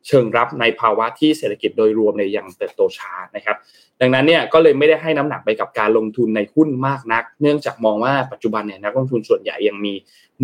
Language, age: Thai, 20-39